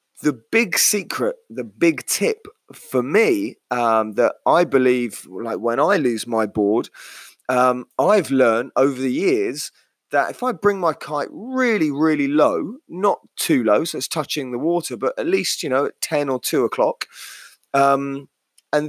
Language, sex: English, male